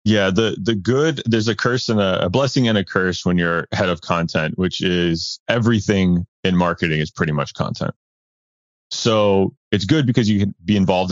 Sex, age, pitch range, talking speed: male, 30-49, 85-110 Hz, 195 wpm